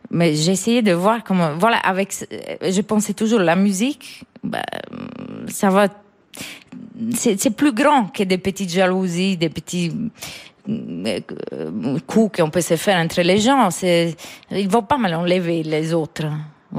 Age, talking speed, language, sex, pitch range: 30-49, 155 wpm, French, female, 170-220 Hz